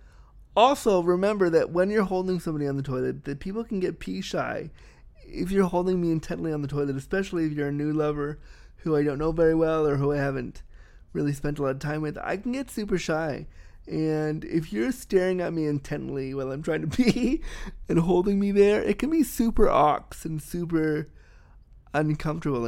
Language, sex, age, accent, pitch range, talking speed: English, male, 20-39, American, 135-185 Hz, 200 wpm